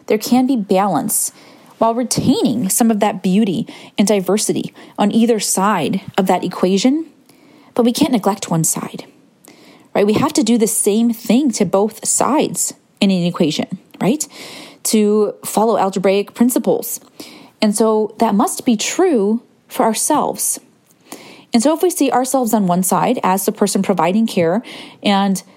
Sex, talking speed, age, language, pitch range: female, 155 wpm, 30-49, English, 200-250 Hz